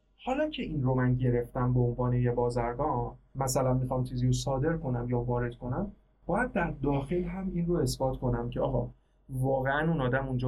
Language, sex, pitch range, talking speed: Persian, male, 125-185 Hz, 190 wpm